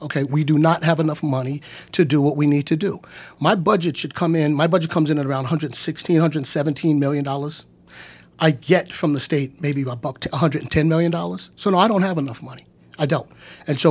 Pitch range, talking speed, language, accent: 135-165 Hz, 205 wpm, English, American